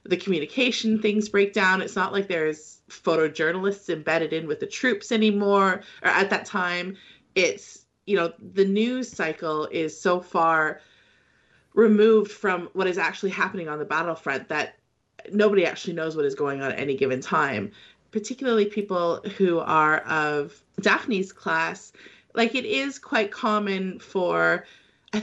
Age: 30-49